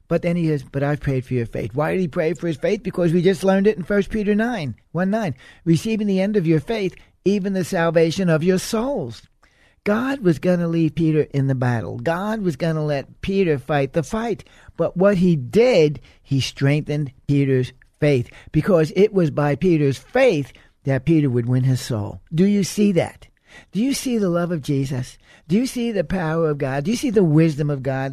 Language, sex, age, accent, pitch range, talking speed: English, male, 60-79, American, 140-190 Hz, 220 wpm